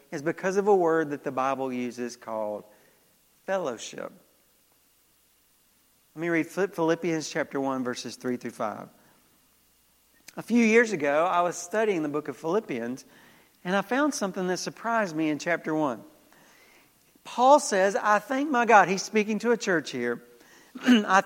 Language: English